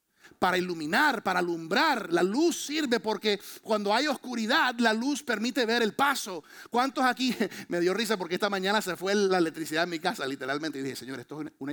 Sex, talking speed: male, 200 wpm